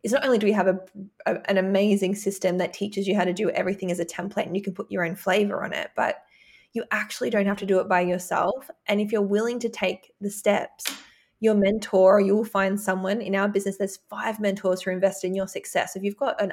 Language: English